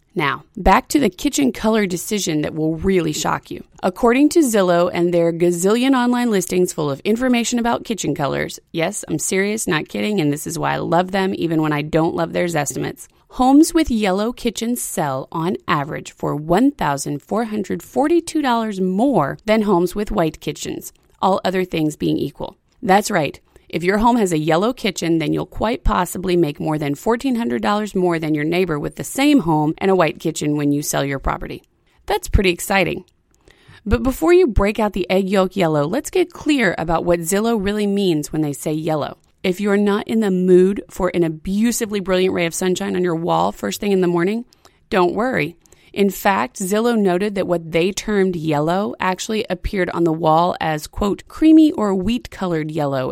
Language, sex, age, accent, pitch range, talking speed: English, female, 30-49, American, 165-215 Hz, 190 wpm